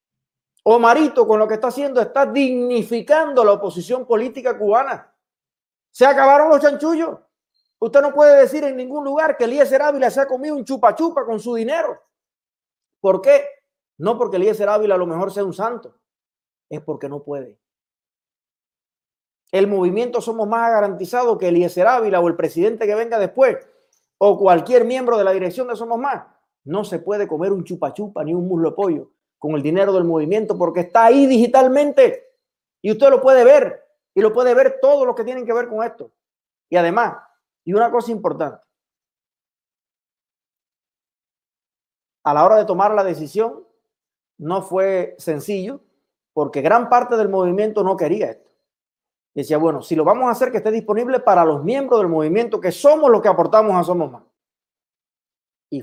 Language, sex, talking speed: Spanish, male, 175 wpm